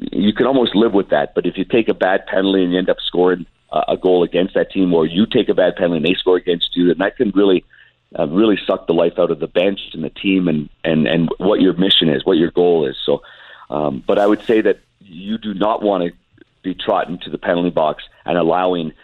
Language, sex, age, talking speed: English, male, 50-69, 255 wpm